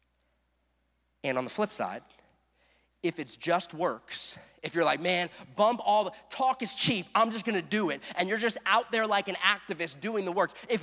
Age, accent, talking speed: 30-49, American, 200 wpm